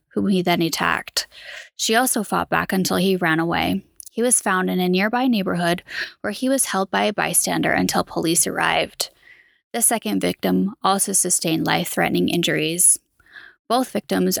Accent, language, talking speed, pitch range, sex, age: American, English, 160 wpm, 180-235 Hz, female, 10-29